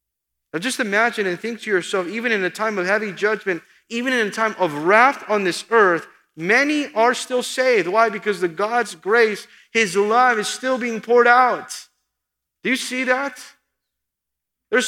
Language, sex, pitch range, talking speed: English, male, 150-220 Hz, 180 wpm